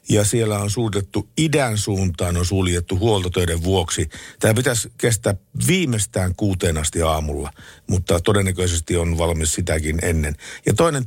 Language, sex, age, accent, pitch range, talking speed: Finnish, male, 50-69, native, 85-110 Hz, 135 wpm